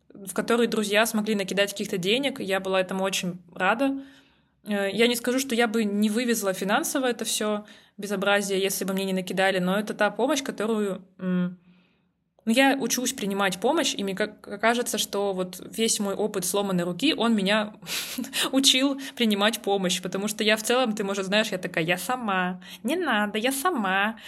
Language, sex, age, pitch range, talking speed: Russian, female, 20-39, 185-225 Hz, 175 wpm